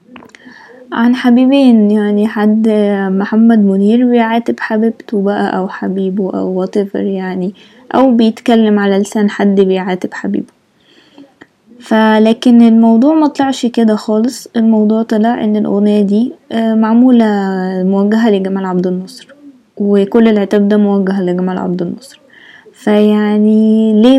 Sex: female